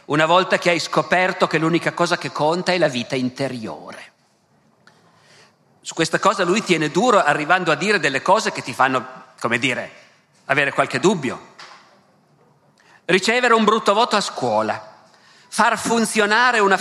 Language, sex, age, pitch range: Italian, male, 50-69, 135-200 Hz